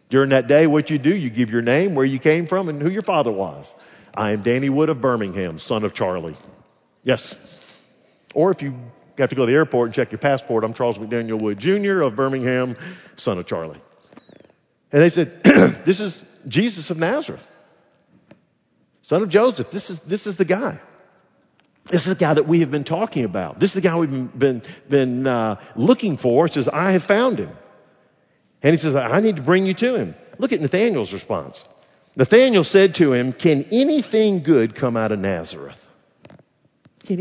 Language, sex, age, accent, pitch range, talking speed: English, male, 50-69, American, 120-195 Hz, 195 wpm